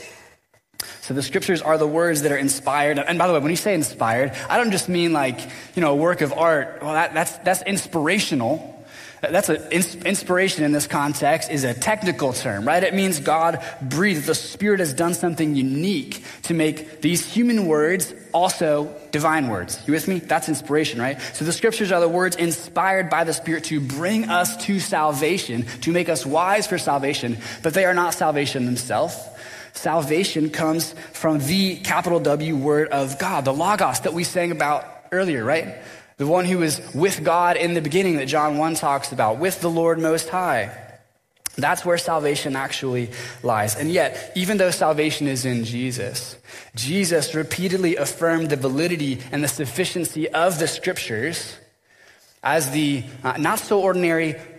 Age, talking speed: 20-39, 175 wpm